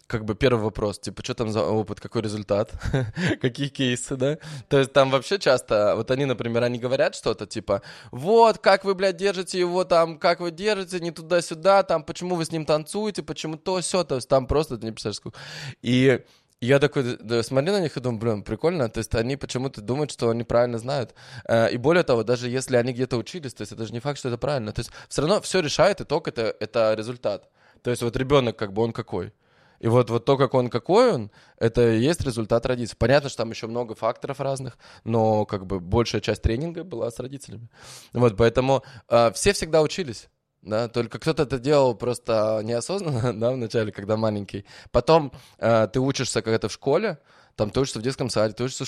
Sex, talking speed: male, 210 wpm